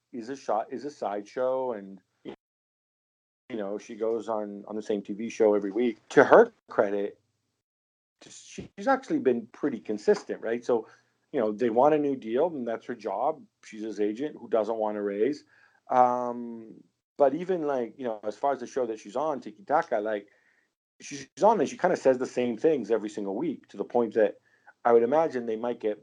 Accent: American